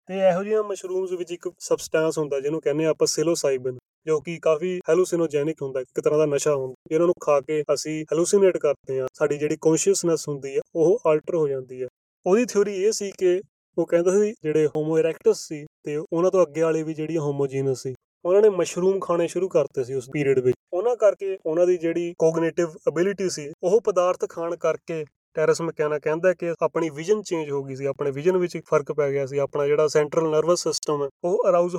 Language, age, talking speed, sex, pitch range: Punjabi, 30-49, 170 wpm, male, 150-180 Hz